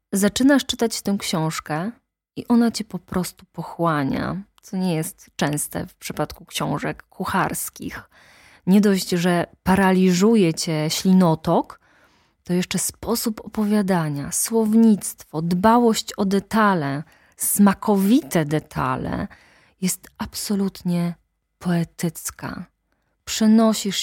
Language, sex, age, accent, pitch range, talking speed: Polish, female, 20-39, native, 170-220 Hz, 95 wpm